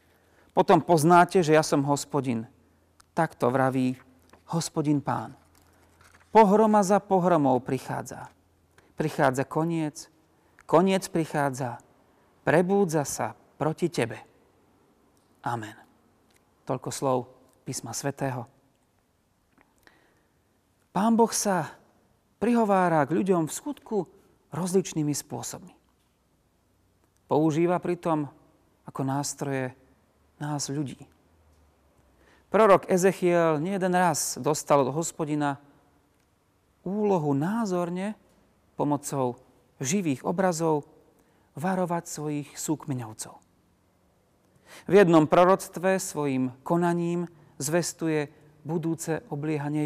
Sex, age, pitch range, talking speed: male, 40-59, 130-170 Hz, 80 wpm